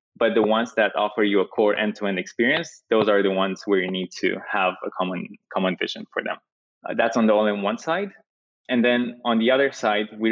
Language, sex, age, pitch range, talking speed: English, male, 20-39, 100-115 Hz, 220 wpm